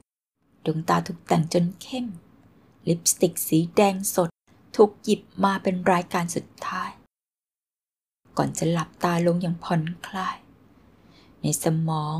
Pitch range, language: 165-200 Hz, Thai